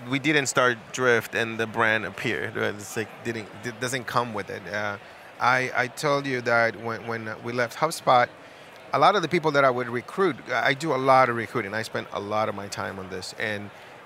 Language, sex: English, male